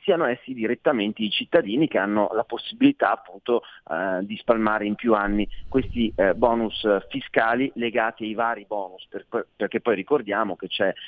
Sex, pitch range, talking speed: male, 110-170 Hz, 170 wpm